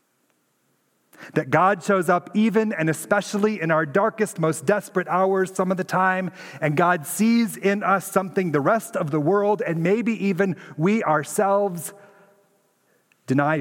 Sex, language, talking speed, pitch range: male, English, 150 wpm, 145-195 Hz